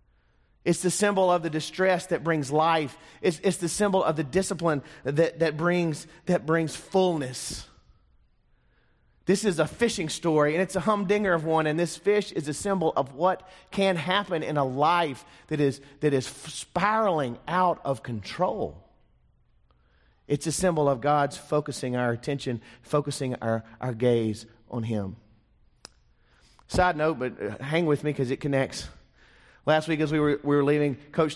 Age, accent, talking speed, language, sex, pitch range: 30-49, American, 160 wpm, English, male, 130-165 Hz